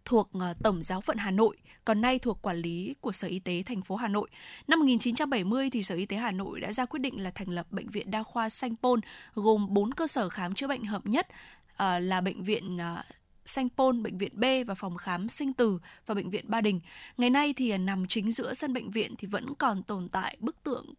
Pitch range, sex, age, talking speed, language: 195-245 Hz, female, 10-29, 235 wpm, Vietnamese